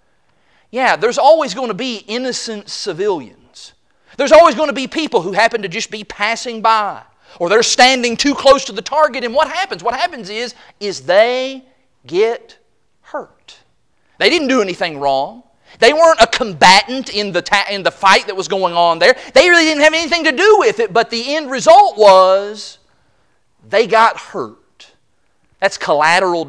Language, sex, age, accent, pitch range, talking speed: English, male, 40-59, American, 205-285 Hz, 170 wpm